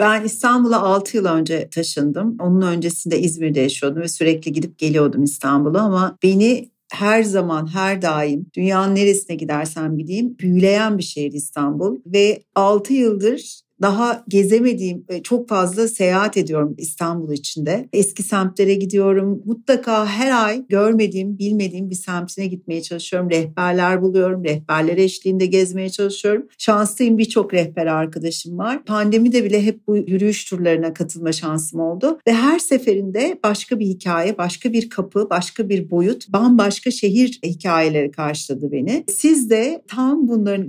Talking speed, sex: 140 wpm, female